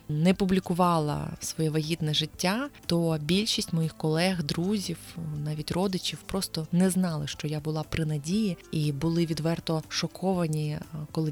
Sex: female